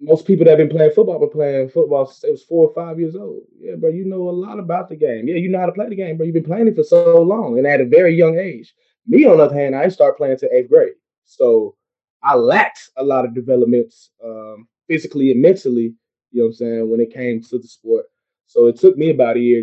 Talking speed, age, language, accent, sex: 275 wpm, 20-39, English, American, male